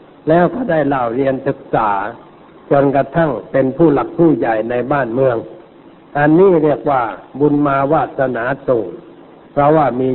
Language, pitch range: Thai, 130-155 Hz